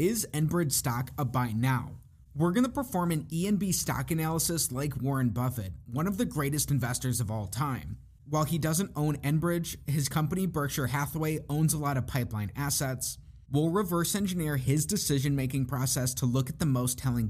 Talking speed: 175 wpm